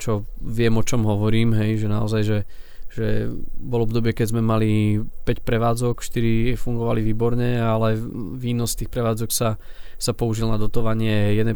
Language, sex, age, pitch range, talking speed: Slovak, male, 20-39, 110-120 Hz, 160 wpm